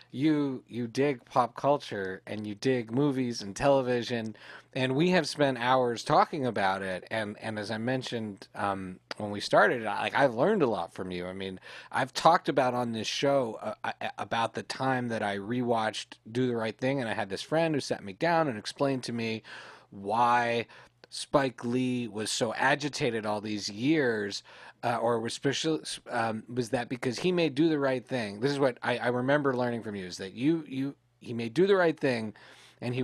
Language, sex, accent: English, male, American